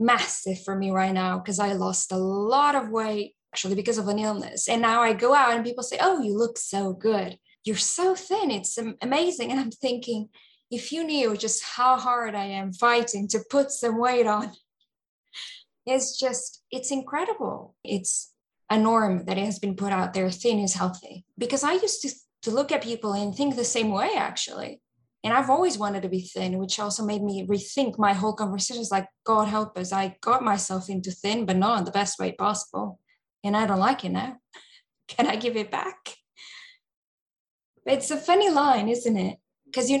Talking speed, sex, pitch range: 200 wpm, female, 200-255 Hz